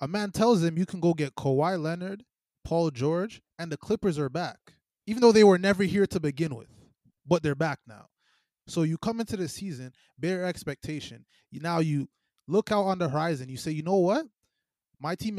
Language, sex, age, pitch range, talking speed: English, male, 20-39, 140-180 Hz, 205 wpm